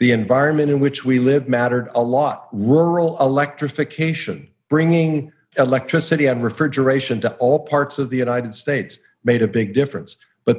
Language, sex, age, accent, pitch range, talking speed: English, male, 50-69, American, 125-155 Hz, 155 wpm